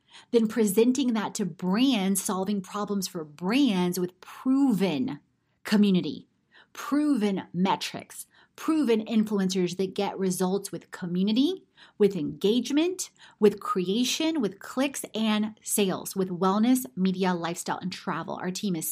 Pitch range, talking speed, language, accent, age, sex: 190-245 Hz, 120 wpm, English, American, 30-49, female